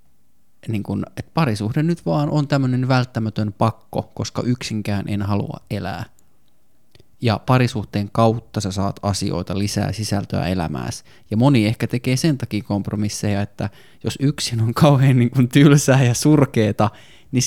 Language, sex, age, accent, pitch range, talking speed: Finnish, male, 20-39, native, 100-130 Hz, 140 wpm